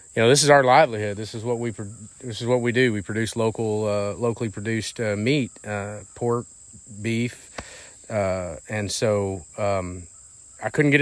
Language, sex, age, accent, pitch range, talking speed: English, male, 30-49, American, 105-120 Hz, 180 wpm